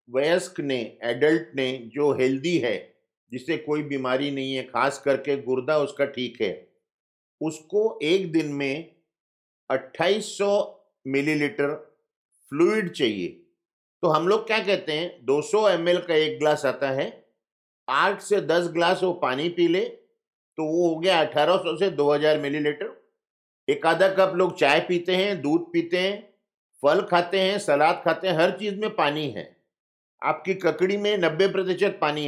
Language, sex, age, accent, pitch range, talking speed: Hindi, male, 50-69, native, 140-195 Hz, 150 wpm